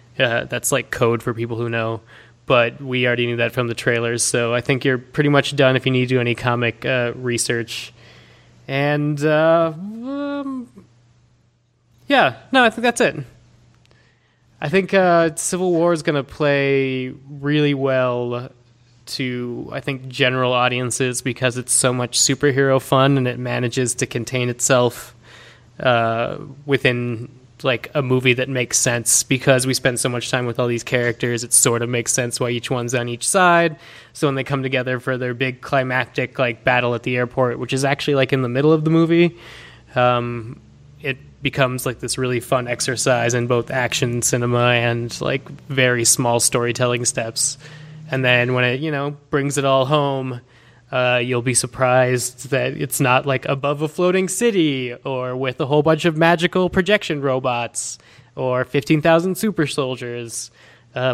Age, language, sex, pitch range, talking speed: 20-39, English, male, 120-140 Hz, 175 wpm